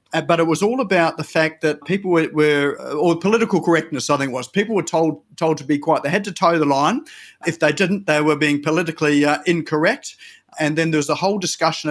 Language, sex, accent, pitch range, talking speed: English, male, Australian, 150-175 Hz, 240 wpm